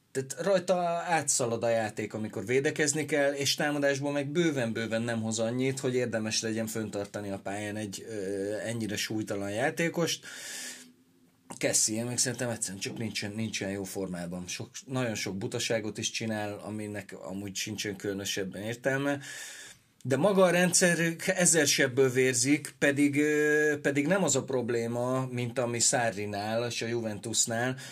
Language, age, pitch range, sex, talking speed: Hungarian, 30-49, 110-145 Hz, male, 140 wpm